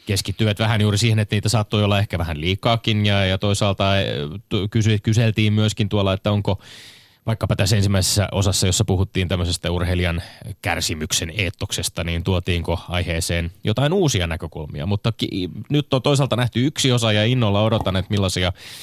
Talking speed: 155 wpm